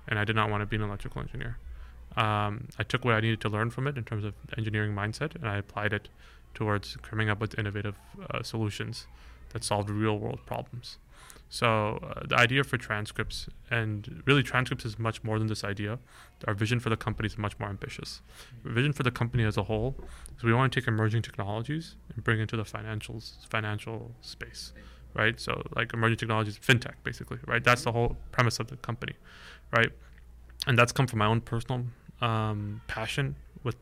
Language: English